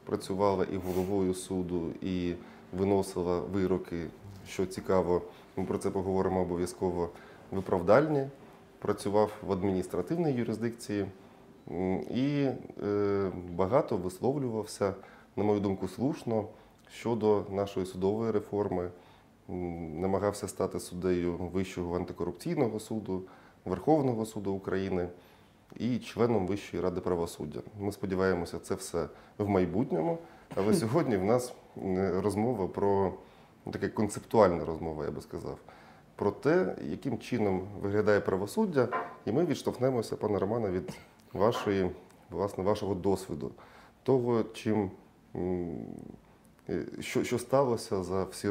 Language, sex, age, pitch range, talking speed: Ukrainian, male, 20-39, 90-105 Hz, 105 wpm